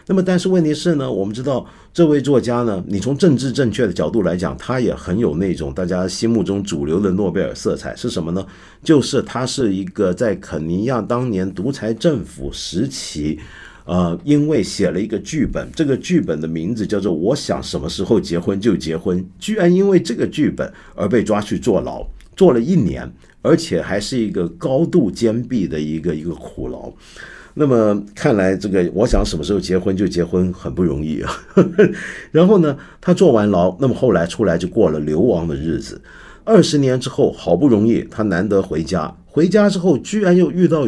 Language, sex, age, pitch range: Chinese, male, 50-69, 90-155 Hz